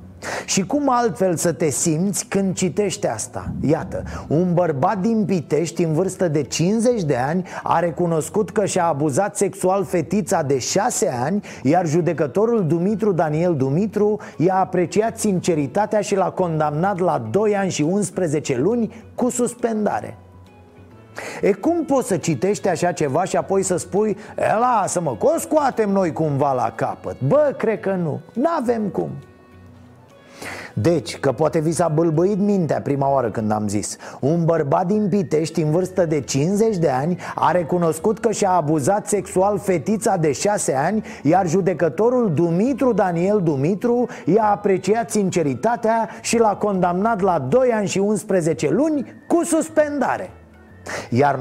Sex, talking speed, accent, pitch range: male, 145 wpm, native, 155-210 Hz